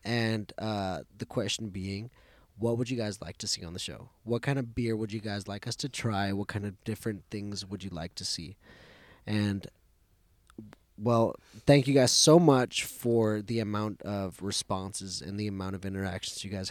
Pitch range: 95-120 Hz